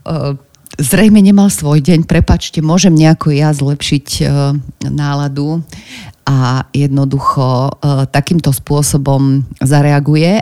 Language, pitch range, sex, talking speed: Slovak, 135-155 Hz, female, 85 wpm